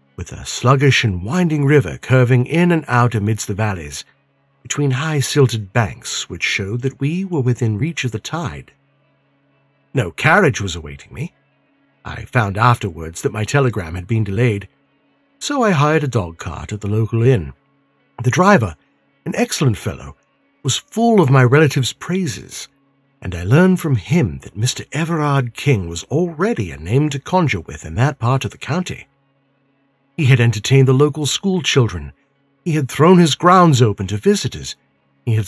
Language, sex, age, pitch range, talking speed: English, male, 60-79, 105-140 Hz, 165 wpm